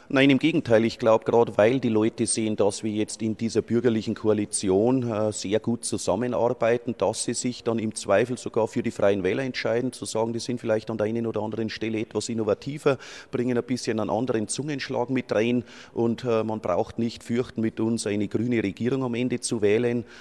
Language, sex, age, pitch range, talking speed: German, male, 30-49, 110-120 Hz, 200 wpm